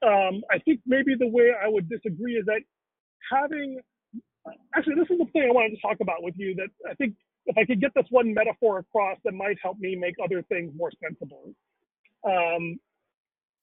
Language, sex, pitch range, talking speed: English, male, 185-240 Hz, 200 wpm